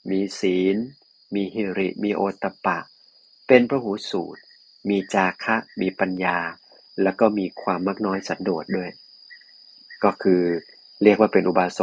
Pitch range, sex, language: 95-110 Hz, male, Thai